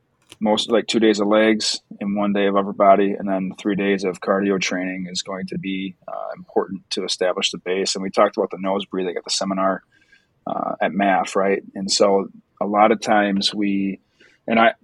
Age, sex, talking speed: 20-39, male, 210 wpm